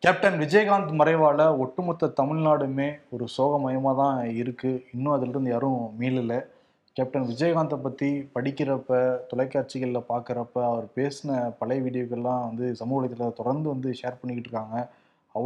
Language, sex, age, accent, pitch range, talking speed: Tamil, male, 20-39, native, 125-155 Hz, 115 wpm